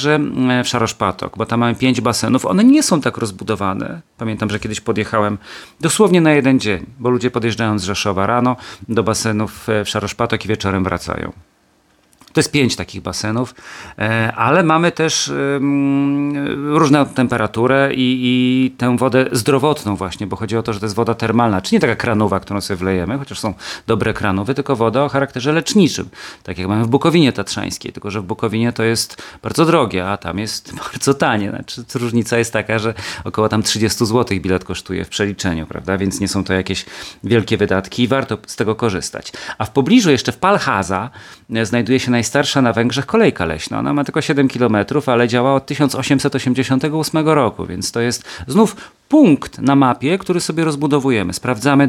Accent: native